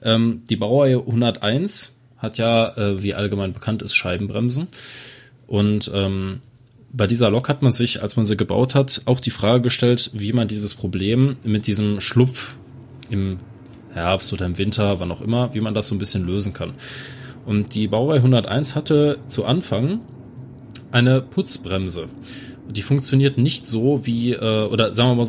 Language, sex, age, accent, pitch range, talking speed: German, male, 20-39, German, 105-130 Hz, 160 wpm